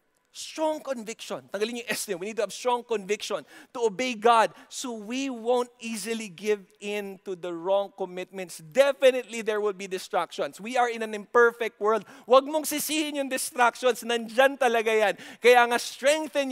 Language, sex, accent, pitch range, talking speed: English, male, Filipino, 220-260 Hz, 165 wpm